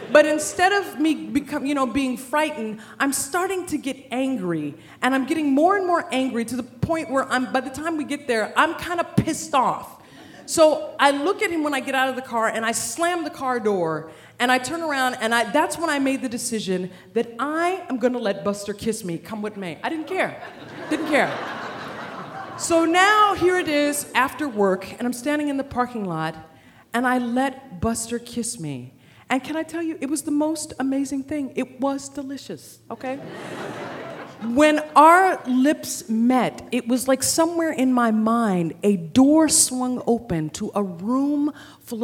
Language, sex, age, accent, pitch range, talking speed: English, female, 40-59, American, 225-300 Hz, 195 wpm